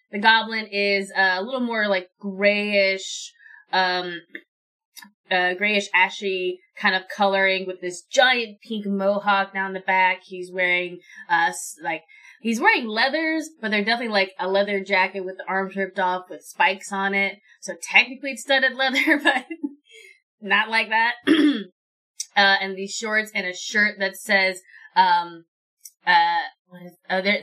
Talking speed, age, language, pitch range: 150 wpm, 20-39, English, 180-225 Hz